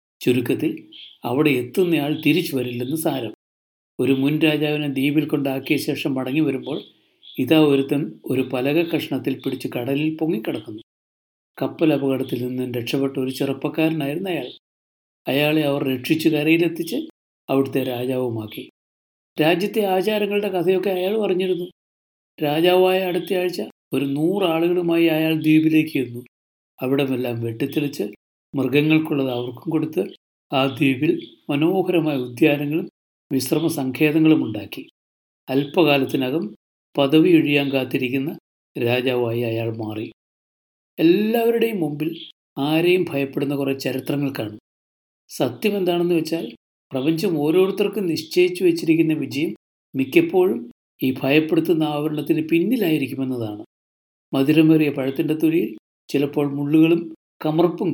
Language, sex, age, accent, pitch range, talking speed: Malayalam, male, 60-79, native, 130-165 Hz, 90 wpm